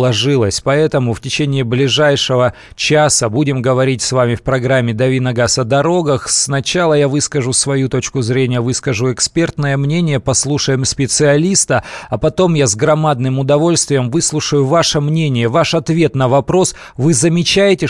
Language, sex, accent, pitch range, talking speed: Russian, male, native, 125-150 Hz, 135 wpm